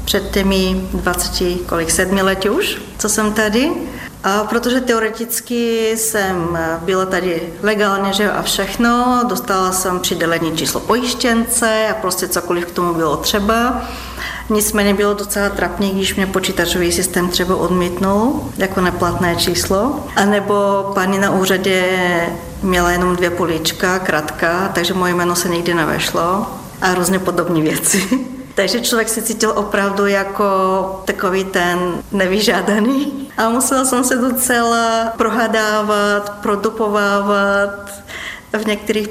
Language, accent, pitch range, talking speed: Czech, native, 180-215 Hz, 125 wpm